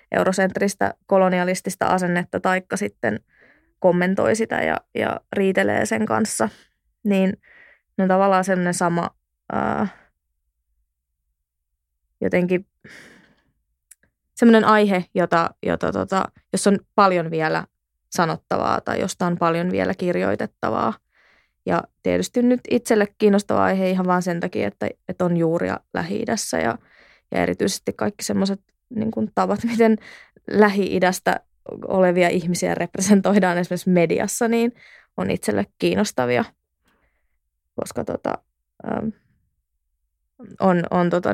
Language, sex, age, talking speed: Finnish, female, 20-39, 105 wpm